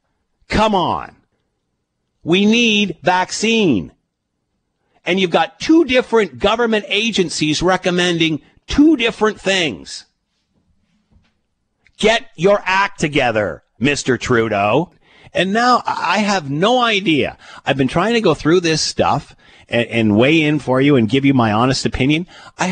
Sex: male